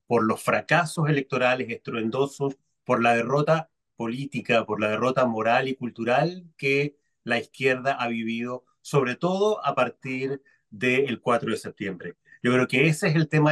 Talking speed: 160 wpm